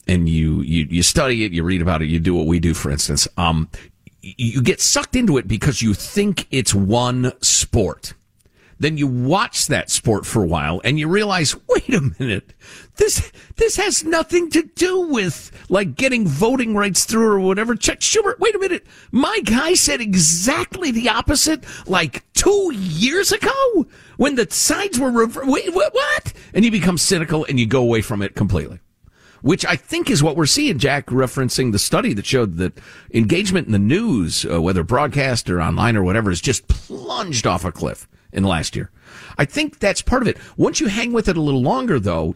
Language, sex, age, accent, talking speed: English, male, 50-69, American, 200 wpm